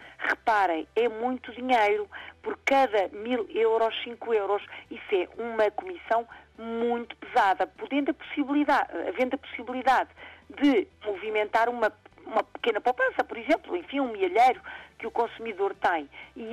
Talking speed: 140 wpm